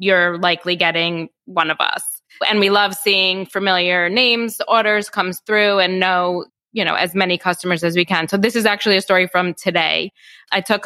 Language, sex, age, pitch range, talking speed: English, female, 20-39, 170-195 Hz, 195 wpm